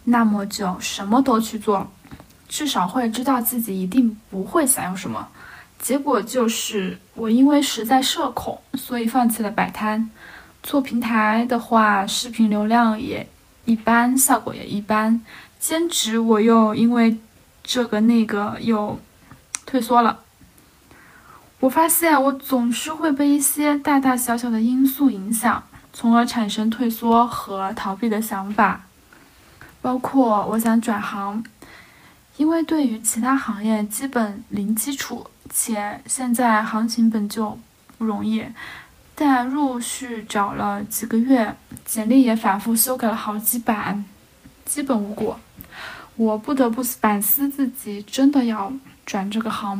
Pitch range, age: 215-255 Hz, 10-29